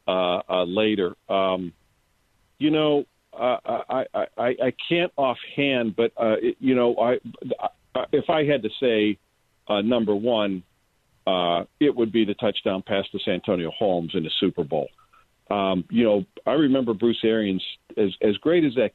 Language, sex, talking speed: English, male, 170 wpm